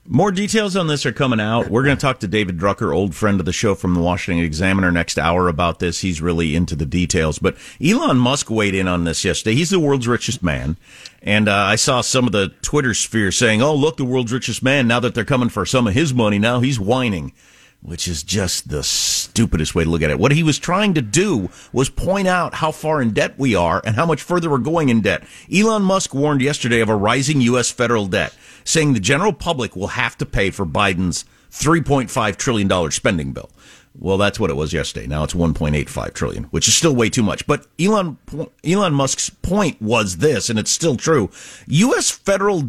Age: 50-69